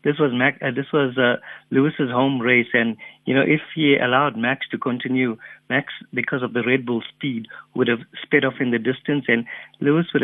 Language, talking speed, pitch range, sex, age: English, 210 wpm, 120-140 Hz, male, 50-69